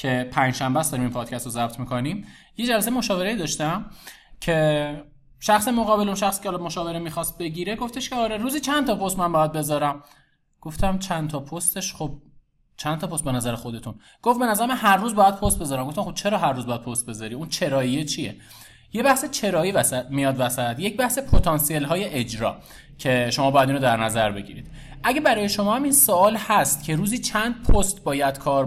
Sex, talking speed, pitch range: male, 195 wpm, 135-210 Hz